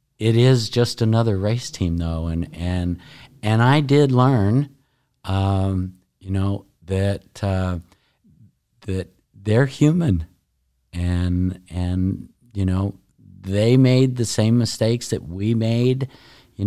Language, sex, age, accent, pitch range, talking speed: English, male, 50-69, American, 90-110 Hz, 120 wpm